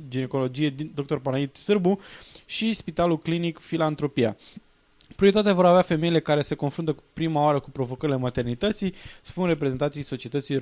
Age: 20-39